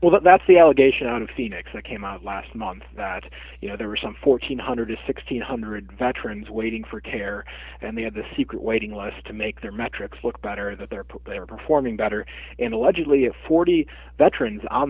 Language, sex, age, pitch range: English, male, 30-49, 100-115 Hz